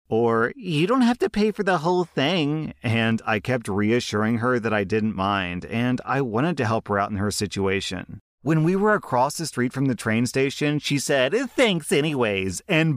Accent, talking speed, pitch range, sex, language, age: American, 205 wpm, 105-125 Hz, male, English, 30-49